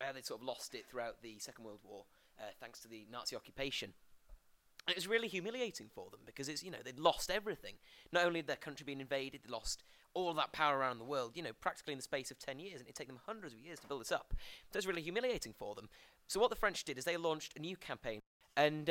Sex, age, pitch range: male, 30-49, 120-160 Hz